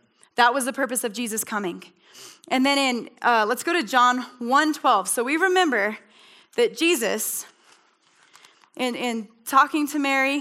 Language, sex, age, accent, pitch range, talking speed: English, female, 10-29, American, 220-275 Hz, 150 wpm